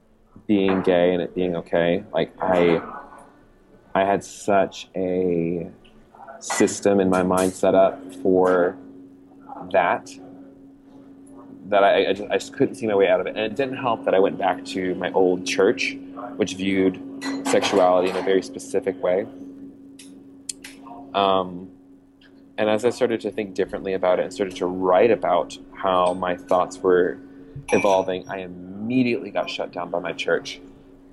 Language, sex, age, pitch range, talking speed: English, male, 20-39, 90-110 Hz, 155 wpm